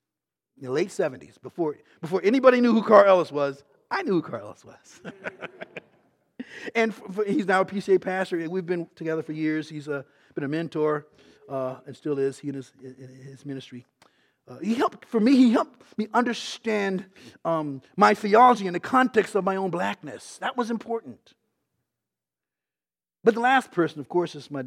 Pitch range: 145-205 Hz